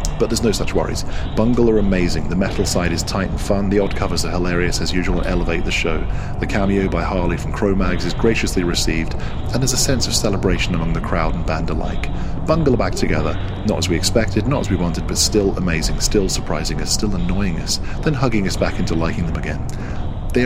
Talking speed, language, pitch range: 225 wpm, English, 85-105 Hz